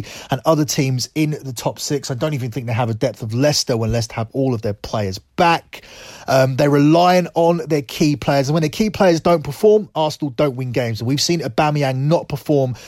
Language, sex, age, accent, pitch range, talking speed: English, male, 30-49, British, 125-155 Hz, 225 wpm